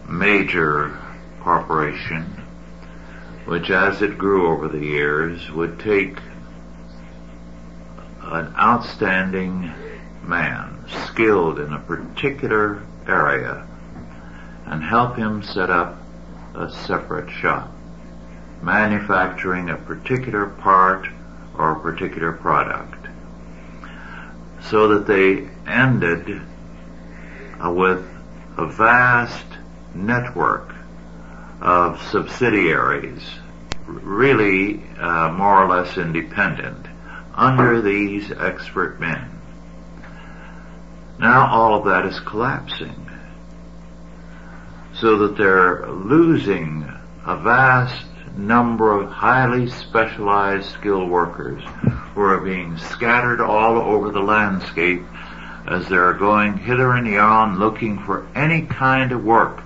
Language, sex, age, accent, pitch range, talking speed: English, male, 60-79, American, 90-115 Hz, 95 wpm